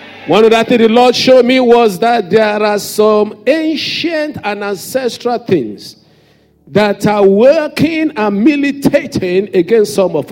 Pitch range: 205-280 Hz